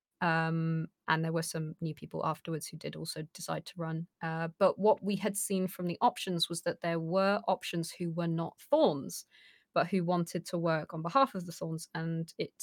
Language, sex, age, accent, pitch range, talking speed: English, female, 20-39, British, 165-200 Hz, 210 wpm